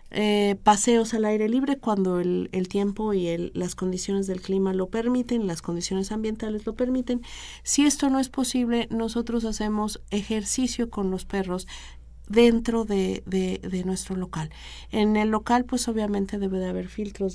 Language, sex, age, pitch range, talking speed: Spanish, female, 40-59, 190-230 Hz, 165 wpm